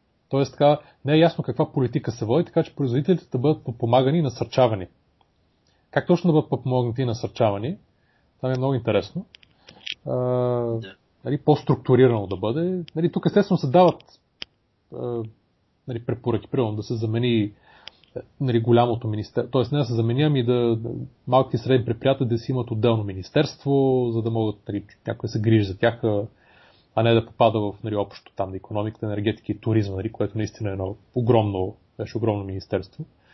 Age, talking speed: 30-49, 170 wpm